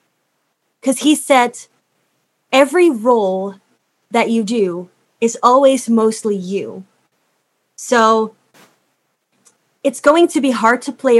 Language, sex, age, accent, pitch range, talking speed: English, female, 20-39, American, 205-255 Hz, 105 wpm